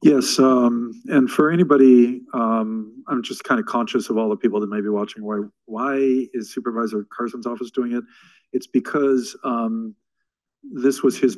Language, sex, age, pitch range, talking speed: English, male, 50-69, 105-120 Hz, 175 wpm